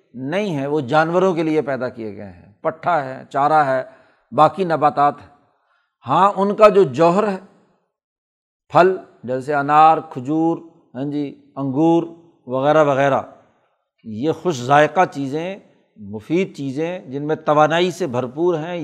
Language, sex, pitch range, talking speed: Urdu, male, 145-175 Hz, 140 wpm